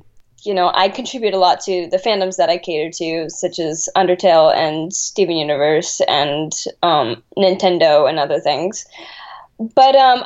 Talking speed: 160 wpm